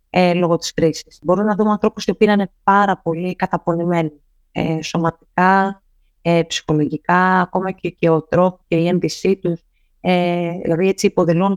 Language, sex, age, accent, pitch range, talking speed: Greek, female, 30-49, native, 170-235 Hz, 140 wpm